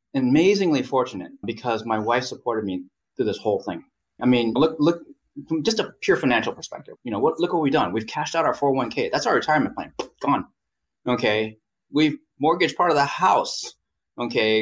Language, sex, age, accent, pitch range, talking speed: English, male, 30-49, American, 110-160 Hz, 190 wpm